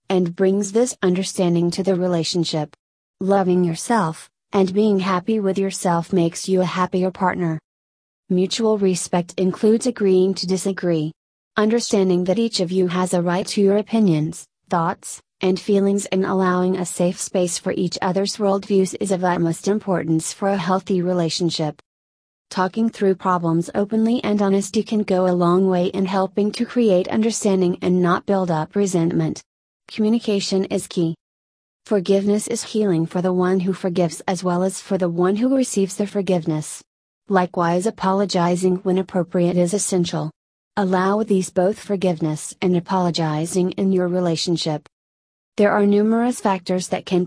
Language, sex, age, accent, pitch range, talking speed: English, female, 30-49, American, 175-200 Hz, 150 wpm